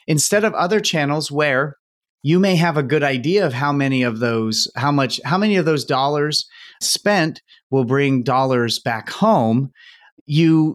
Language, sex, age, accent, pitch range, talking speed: English, male, 30-49, American, 115-150 Hz, 165 wpm